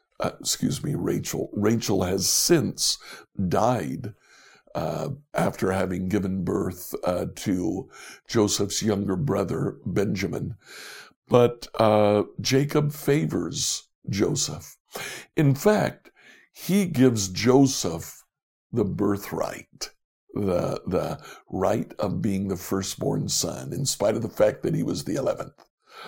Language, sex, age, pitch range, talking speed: English, male, 60-79, 105-130 Hz, 115 wpm